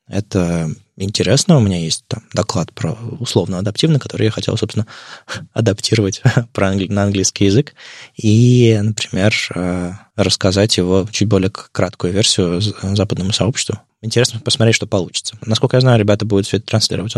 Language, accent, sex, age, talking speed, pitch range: Russian, native, male, 20-39, 135 wpm, 95-115 Hz